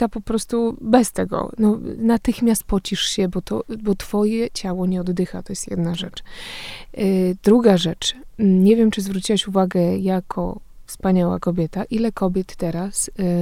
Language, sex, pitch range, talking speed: Polish, female, 180-215 Hz, 150 wpm